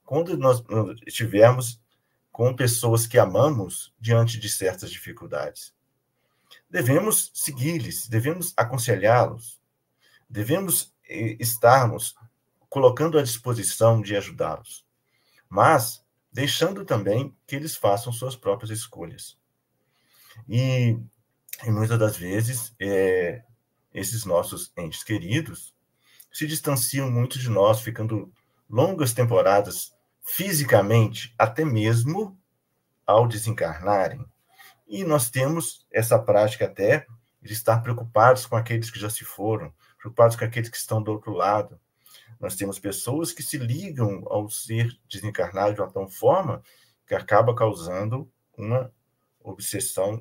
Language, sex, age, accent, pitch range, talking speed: Portuguese, male, 50-69, Brazilian, 110-130 Hz, 110 wpm